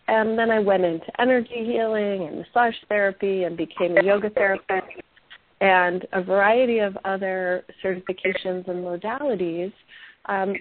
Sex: female